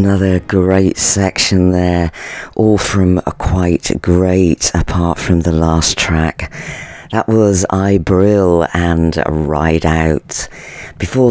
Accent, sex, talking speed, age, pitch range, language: British, female, 110 wpm, 40-59, 85-100 Hz, English